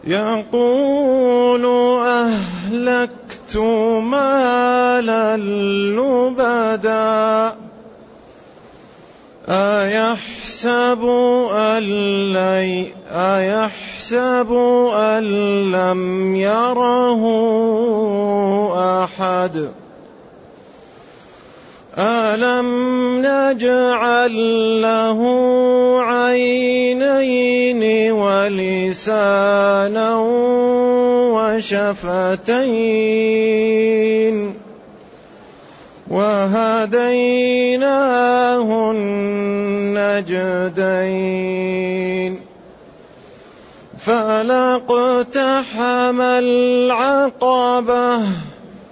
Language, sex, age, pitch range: Arabic, male, 30-49, 205-245 Hz